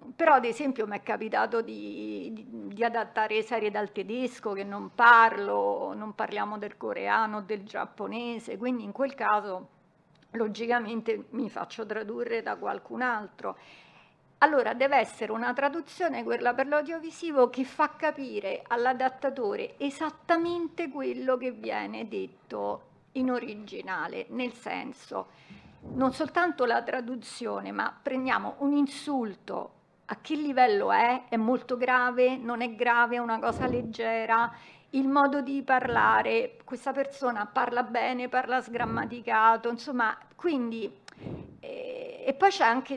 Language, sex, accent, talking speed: Italian, female, native, 130 wpm